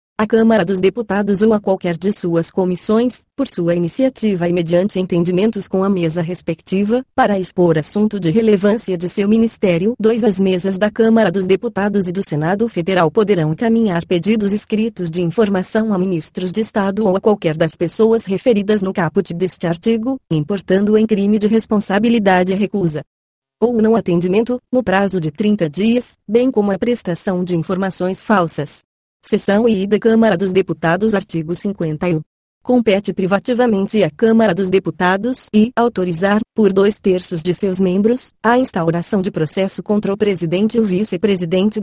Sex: female